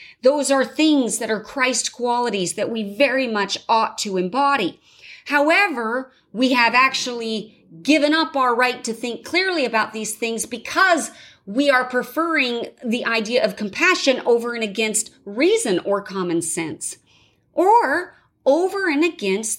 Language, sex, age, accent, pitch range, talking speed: English, female, 40-59, American, 225-315 Hz, 145 wpm